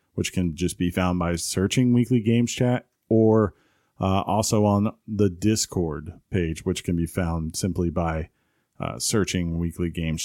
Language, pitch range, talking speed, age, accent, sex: English, 90-110 Hz, 160 wpm, 40-59, American, male